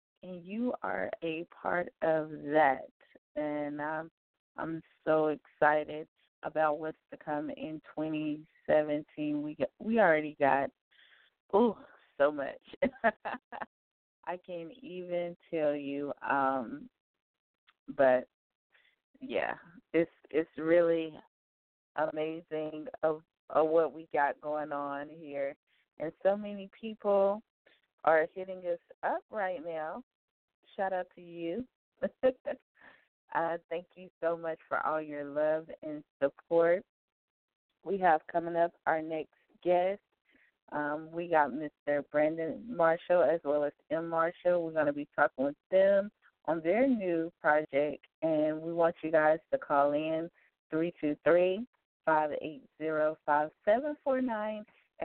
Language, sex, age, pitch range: English, female, 20-39, 150-195 Hz